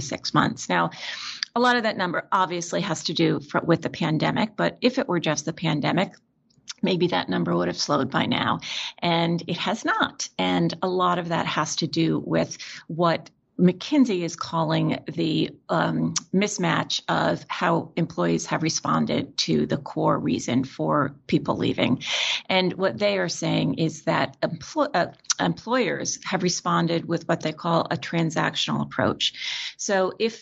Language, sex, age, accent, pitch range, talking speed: English, female, 40-59, American, 155-190 Hz, 160 wpm